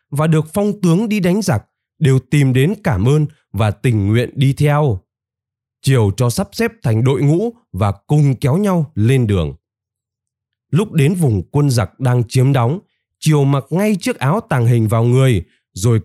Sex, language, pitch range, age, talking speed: male, Vietnamese, 115-165 Hz, 20-39, 180 wpm